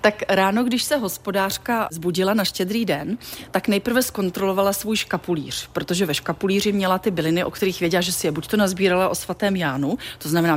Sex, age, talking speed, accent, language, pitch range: female, 30-49, 195 wpm, native, Czech, 175-215 Hz